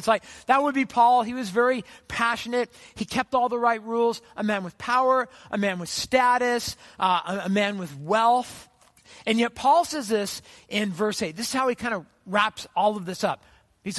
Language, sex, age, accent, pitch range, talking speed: English, male, 50-69, American, 180-240 Hz, 215 wpm